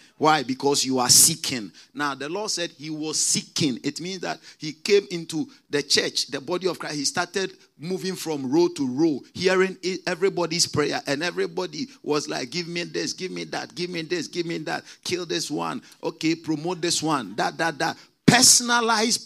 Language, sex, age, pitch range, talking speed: English, male, 50-69, 150-205 Hz, 190 wpm